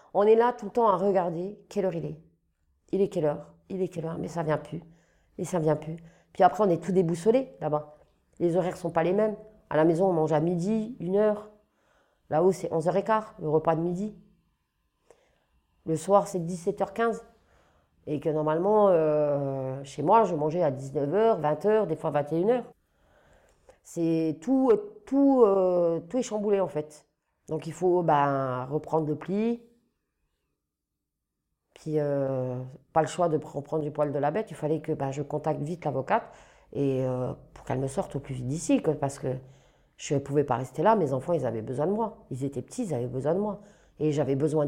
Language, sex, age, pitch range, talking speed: French, female, 40-59, 150-195 Hz, 200 wpm